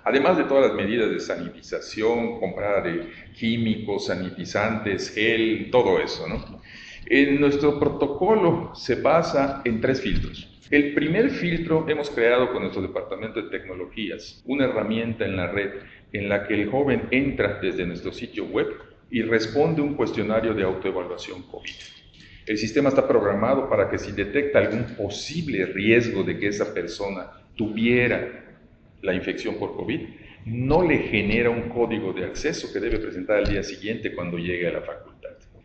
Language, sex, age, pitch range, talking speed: Spanish, male, 50-69, 100-130 Hz, 155 wpm